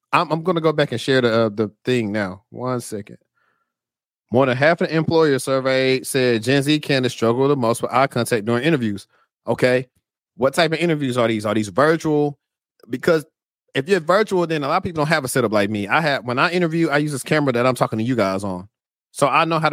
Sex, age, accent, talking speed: male, 30-49, American, 235 wpm